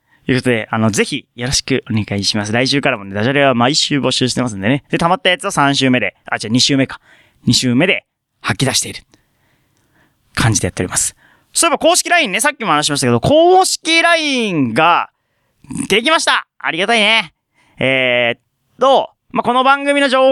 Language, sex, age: Japanese, male, 30-49